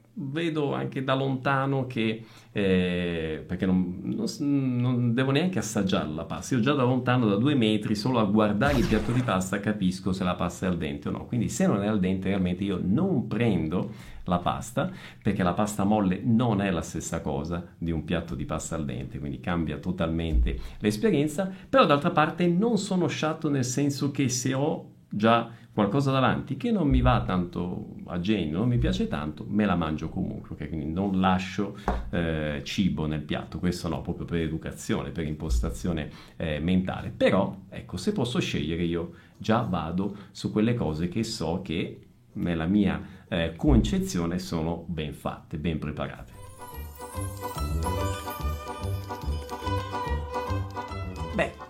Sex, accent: male, native